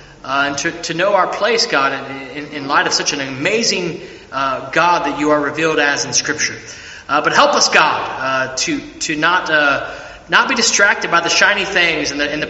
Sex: male